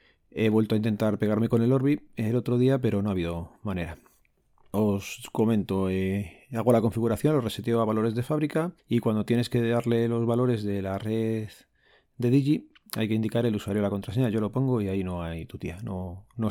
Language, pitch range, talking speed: Spanish, 100-120 Hz, 210 wpm